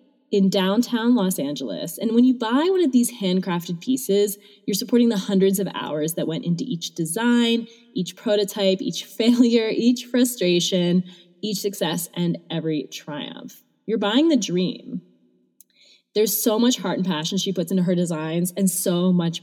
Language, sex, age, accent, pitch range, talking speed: English, female, 20-39, American, 170-225 Hz, 165 wpm